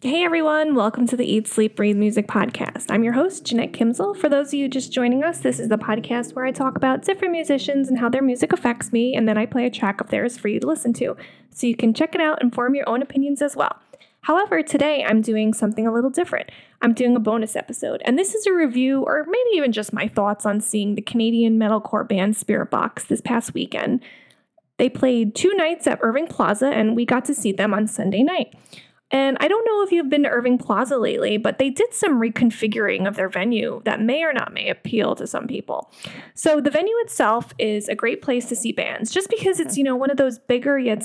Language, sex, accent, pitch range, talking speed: English, female, American, 220-290 Hz, 240 wpm